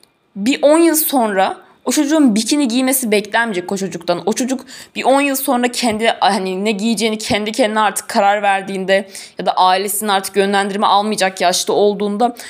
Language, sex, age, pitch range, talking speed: Turkish, female, 20-39, 200-275 Hz, 165 wpm